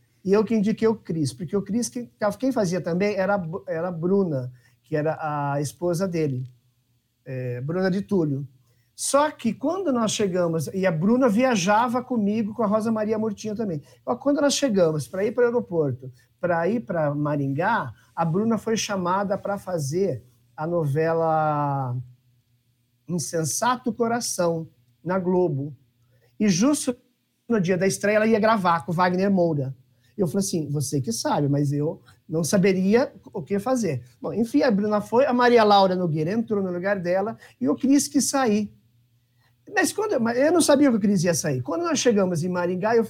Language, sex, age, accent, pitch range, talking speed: Portuguese, male, 50-69, Brazilian, 145-225 Hz, 175 wpm